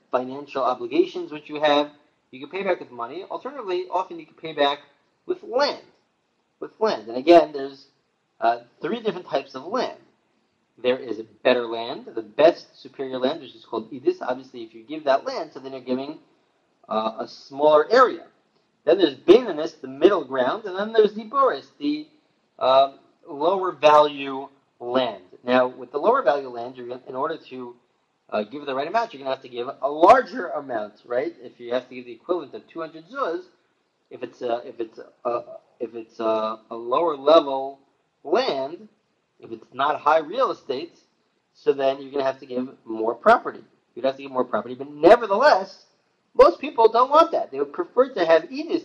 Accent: American